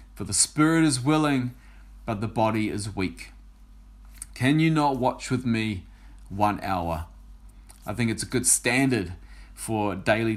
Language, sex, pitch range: English, male, 100-140 Hz